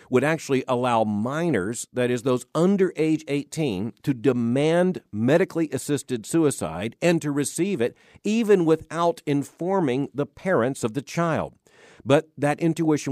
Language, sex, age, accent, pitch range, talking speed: English, male, 50-69, American, 115-155 Hz, 135 wpm